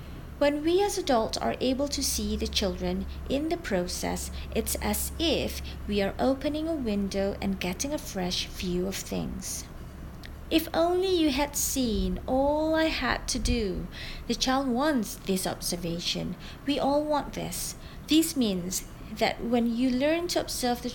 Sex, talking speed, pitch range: female, 160 wpm, 205-280 Hz